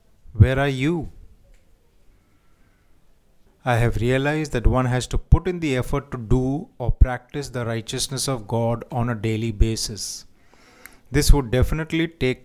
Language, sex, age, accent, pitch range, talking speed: Hindi, male, 30-49, native, 110-130 Hz, 145 wpm